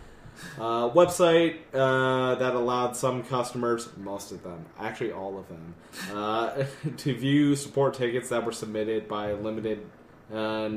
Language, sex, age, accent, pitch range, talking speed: English, male, 20-39, American, 105-130 Hz, 145 wpm